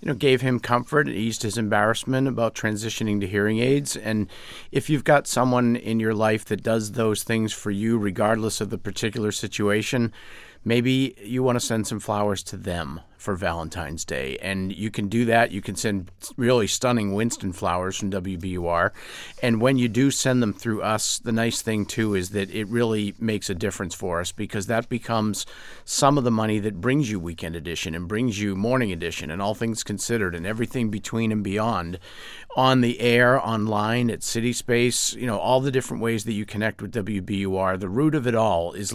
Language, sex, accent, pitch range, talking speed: English, male, American, 100-120 Hz, 200 wpm